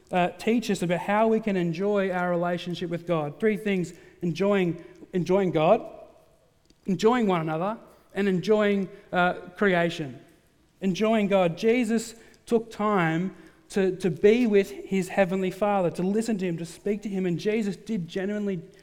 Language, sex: English, male